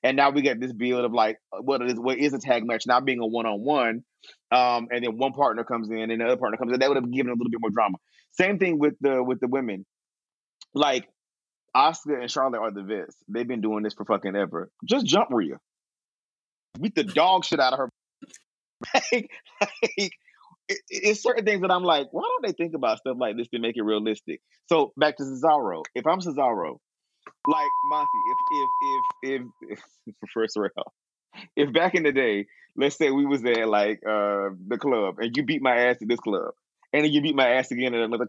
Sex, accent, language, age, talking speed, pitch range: male, American, English, 30-49, 220 wpm, 120-190 Hz